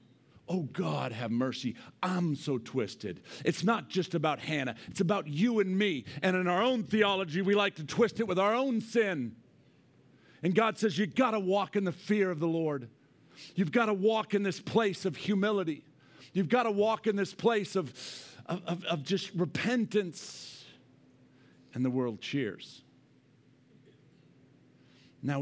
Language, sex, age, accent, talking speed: English, male, 50-69, American, 165 wpm